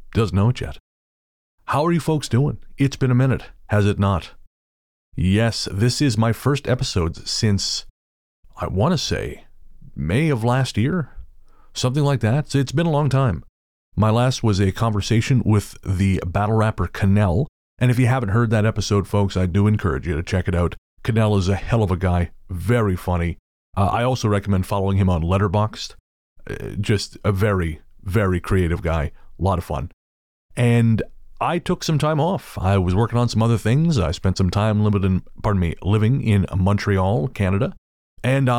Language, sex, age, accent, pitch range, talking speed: English, male, 30-49, American, 95-120 Hz, 180 wpm